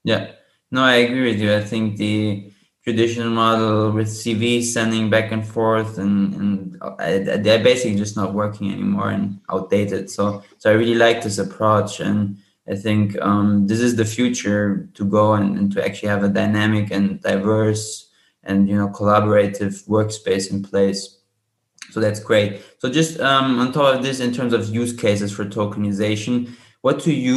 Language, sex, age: English, male, 20-39